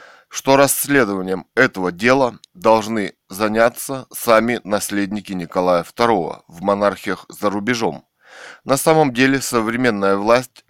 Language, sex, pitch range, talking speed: Russian, male, 105-130 Hz, 105 wpm